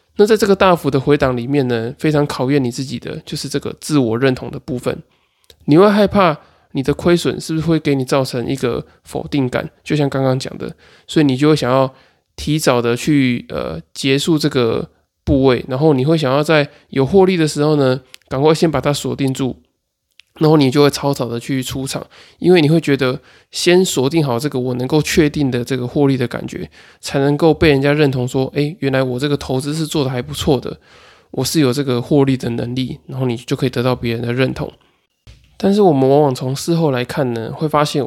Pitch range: 130-150 Hz